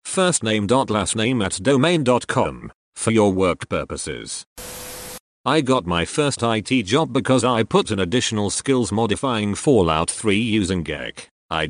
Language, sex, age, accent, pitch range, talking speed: English, male, 40-59, British, 100-130 Hz, 150 wpm